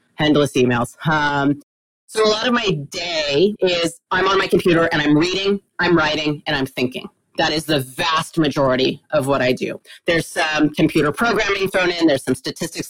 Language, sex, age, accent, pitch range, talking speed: English, female, 30-49, American, 145-175 Hz, 185 wpm